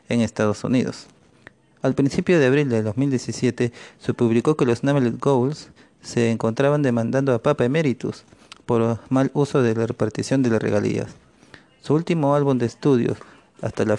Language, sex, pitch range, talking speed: Spanish, male, 115-145 Hz, 160 wpm